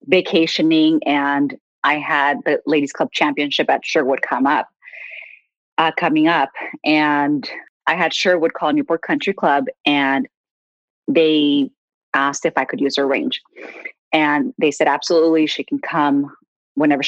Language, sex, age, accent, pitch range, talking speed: English, female, 30-49, American, 145-175 Hz, 140 wpm